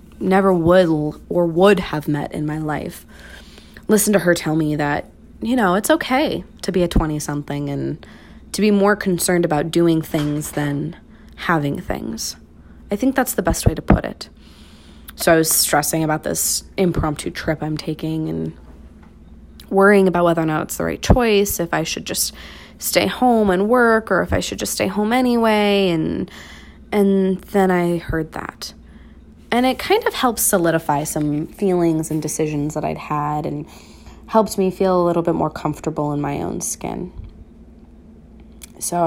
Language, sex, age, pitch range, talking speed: English, female, 20-39, 150-195 Hz, 175 wpm